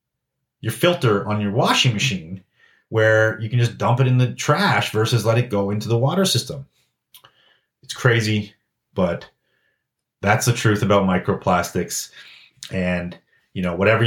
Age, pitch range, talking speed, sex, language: 30-49, 100-125 Hz, 150 wpm, male, English